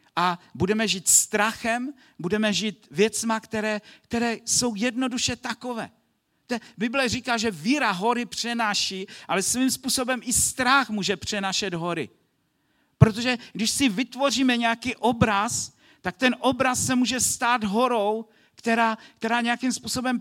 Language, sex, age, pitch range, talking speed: Czech, male, 50-69, 200-245 Hz, 130 wpm